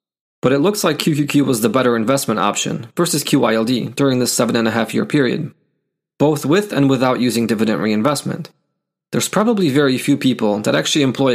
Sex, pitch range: male, 115-150 Hz